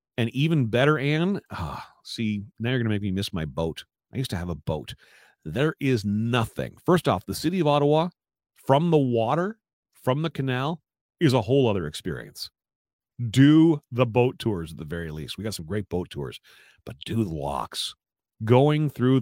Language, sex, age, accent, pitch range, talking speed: English, male, 40-59, American, 110-165 Hz, 190 wpm